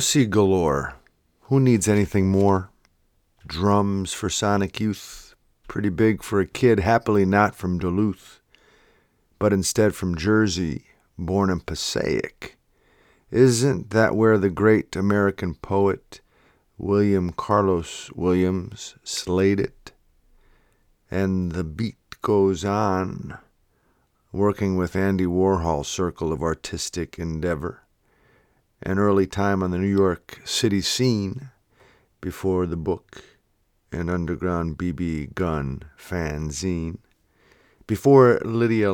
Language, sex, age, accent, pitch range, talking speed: English, male, 50-69, American, 90-105 Hz, 110 wpm